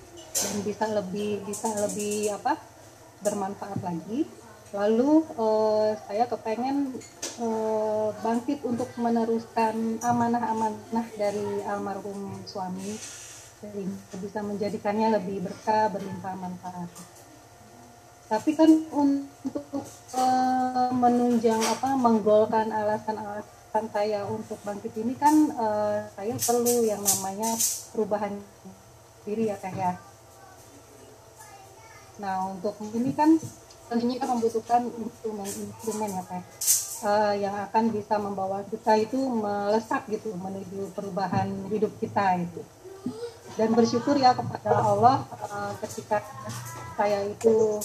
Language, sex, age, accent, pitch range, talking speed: Indonesian, female, 30-49, native, 200-235 Hz, 105 wpm